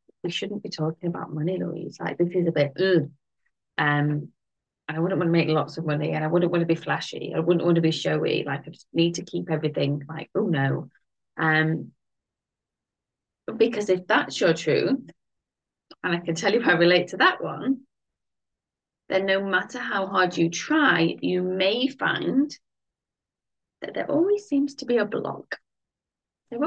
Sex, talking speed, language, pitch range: female, 180 wpm, English, 160-215 Hz